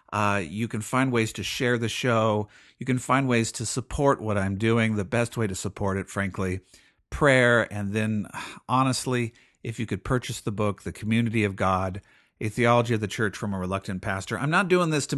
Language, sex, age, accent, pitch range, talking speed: English, male, 50-69, American, 105-140 Hz, 210 wpm